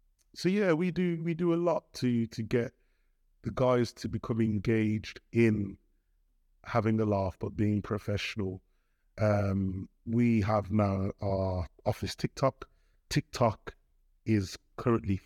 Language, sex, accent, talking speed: English, male, British, 130 wpm